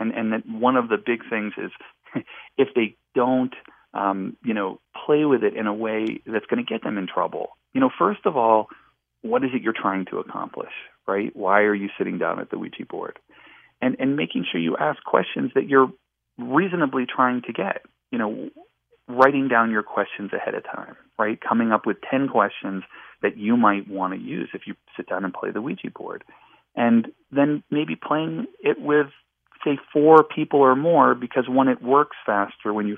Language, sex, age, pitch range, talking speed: English, male, 40-59, 105-150 Hz, 200 wpm